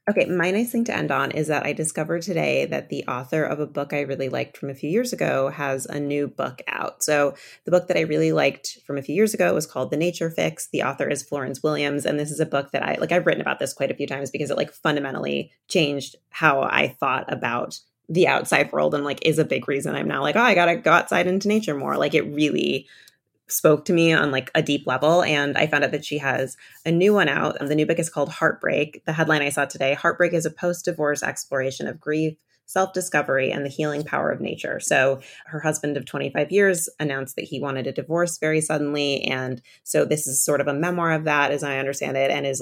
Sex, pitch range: female, 140-165 Hz